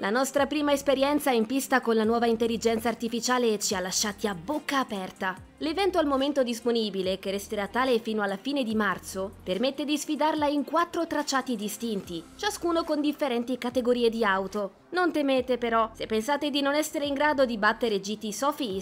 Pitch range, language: 225-300 Hz, Italian